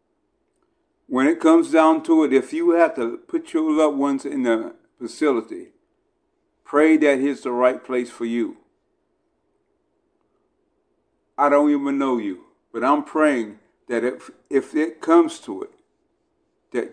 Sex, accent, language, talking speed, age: male, American, English, 145 wpm, 50-69